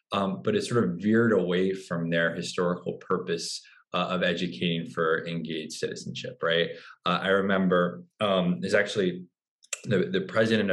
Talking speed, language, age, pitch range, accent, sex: 150 wpm, English, 20-39, 85-105 Hz, American, male